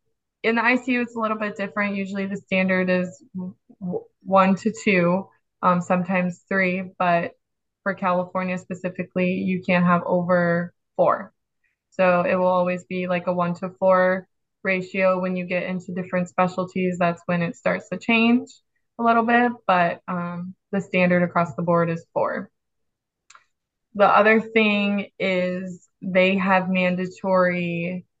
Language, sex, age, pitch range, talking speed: English, female, 20-39, 180-205 Hz, 145 wpm